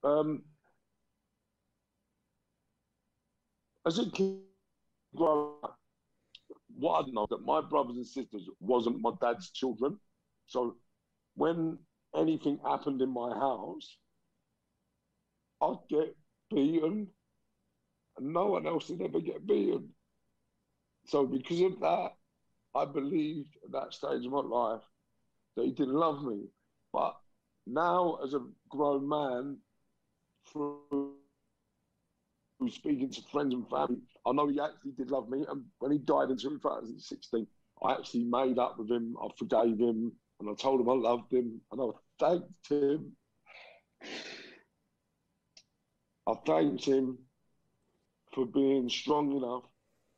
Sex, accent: male, British